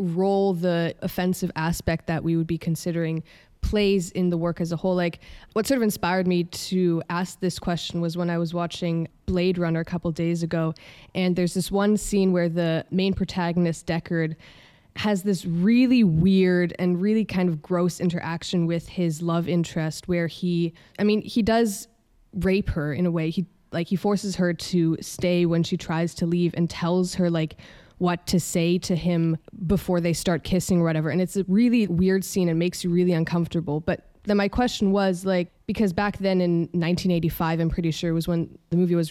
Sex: female